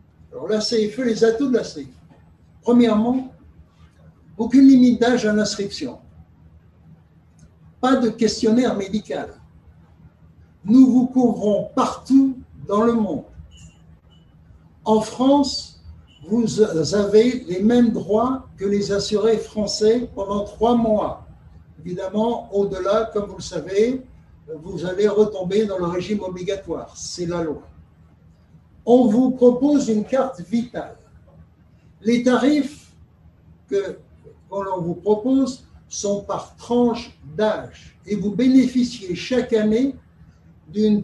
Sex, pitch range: male, 170-235 Hz